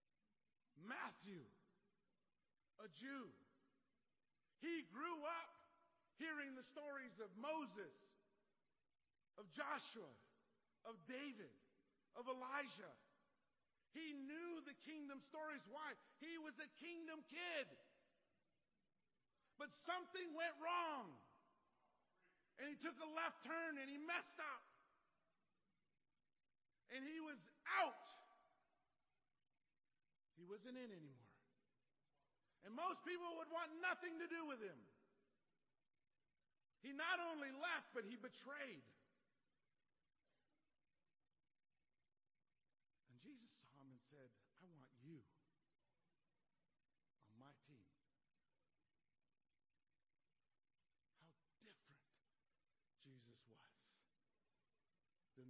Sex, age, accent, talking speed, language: male, 50-69, American, 90 wpm, English